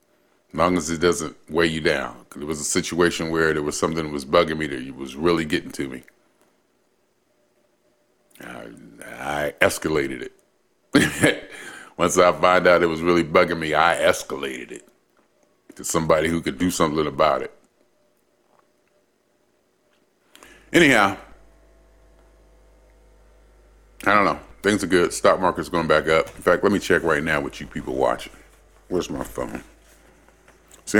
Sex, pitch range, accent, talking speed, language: male, 75-90 Hz, American, 150 wpm, English